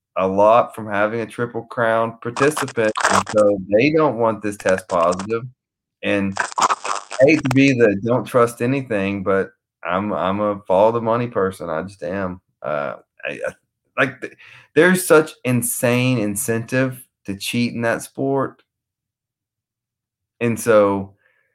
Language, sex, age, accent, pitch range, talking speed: English, male, 30-49, American, 105-135 Hz, 145 wpm